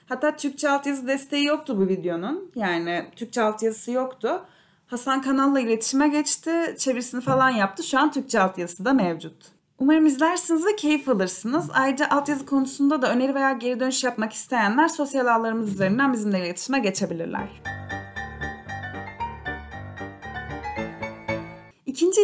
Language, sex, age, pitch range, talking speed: Turkish, female, 30-49, 195-275 Hz, 125 wpm